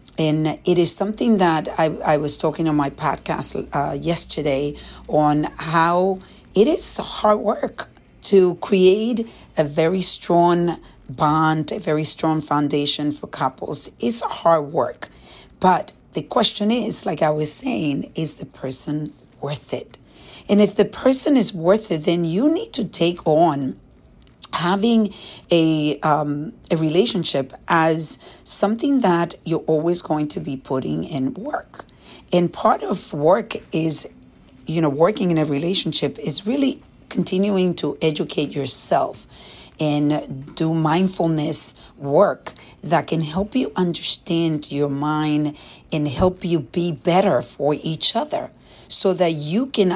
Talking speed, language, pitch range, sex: 140 wpm, English, 150-185 Hz, female